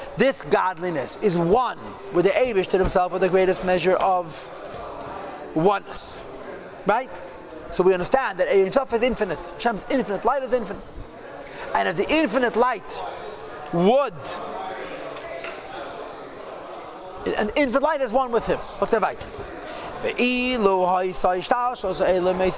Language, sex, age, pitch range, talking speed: English, male, 30-49, 185-250 Hz, 110 wpm